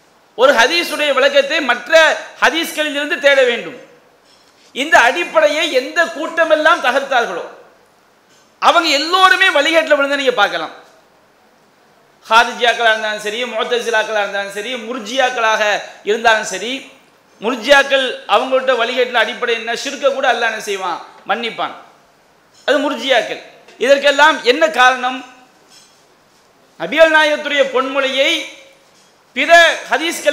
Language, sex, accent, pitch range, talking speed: English, male, Indian, 225-285 Hz, 85 wpm